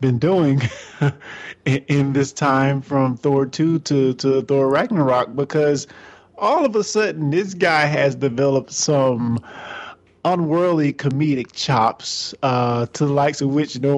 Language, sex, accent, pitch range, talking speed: English, male, American, 120-155 Hz, 135 wpm